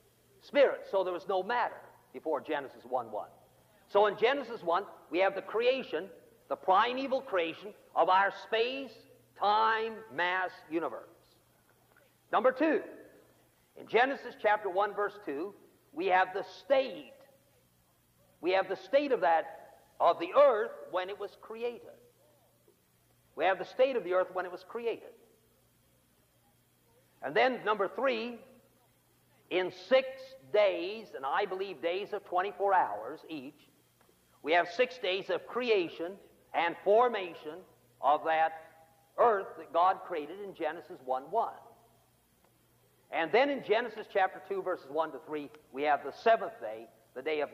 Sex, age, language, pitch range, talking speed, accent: male, 50-69, English, 165-235 Hz, 145 wpm, American